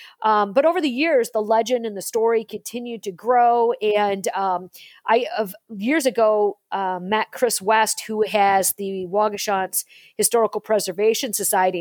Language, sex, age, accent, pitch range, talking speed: English, female, 40-59, American, 200-240 Hz, 155 wpm